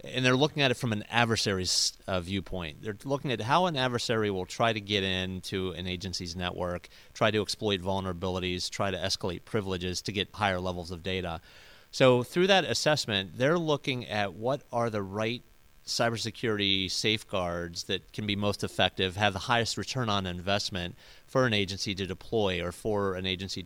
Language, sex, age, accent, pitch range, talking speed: English, male, 30-49, American, 95-115 Hz, 180 wpm